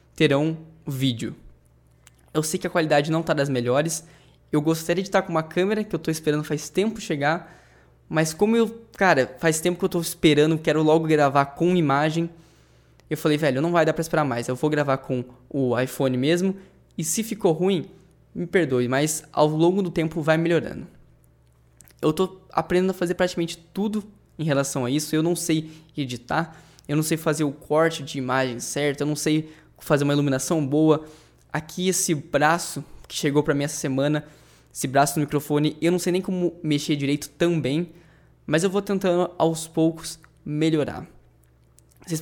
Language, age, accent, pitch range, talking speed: Portuguese, 10-29, Brazilian, 140-170 Hz, 185 wpm